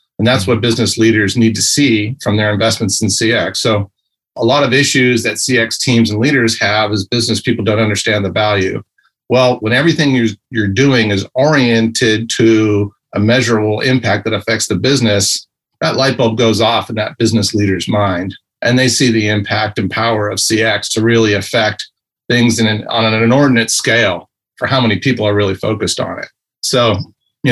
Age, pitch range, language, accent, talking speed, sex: 40-59, 105-120 Hz, English, American, 190 wpm, male